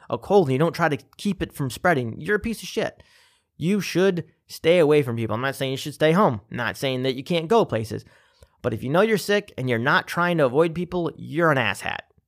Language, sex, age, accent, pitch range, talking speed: English, male, 30-49, American, 125-175 Hz, 260 wpm